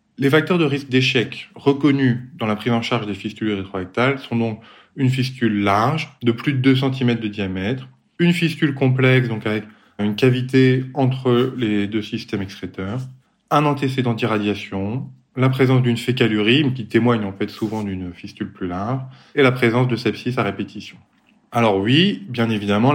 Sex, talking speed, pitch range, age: male, 170 wpm, 110-135 Hz, 20-39